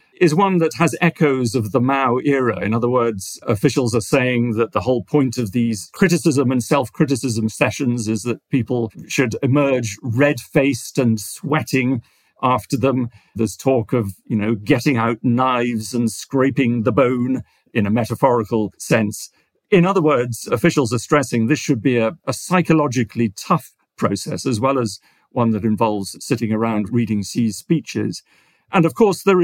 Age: 50-69